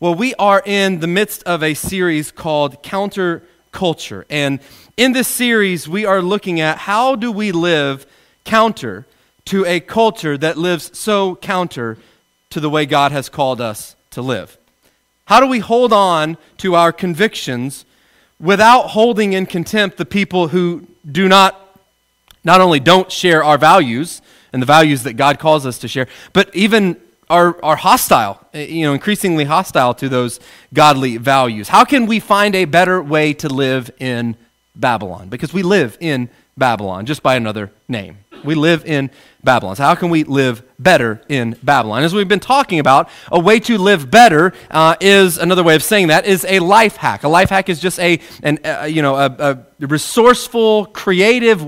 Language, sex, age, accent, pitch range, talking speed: English, male, 30-49, American, 140-195 Hz, 175 wpm